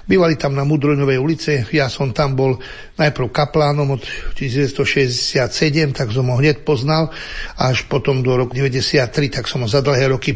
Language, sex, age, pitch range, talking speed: Slovak, male, 60-79, 135-155 Hz, 170 wpm